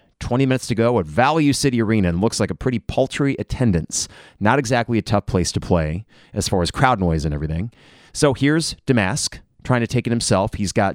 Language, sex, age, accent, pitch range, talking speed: English, male, 30-49, American, 95-125 Hz, 215 wpm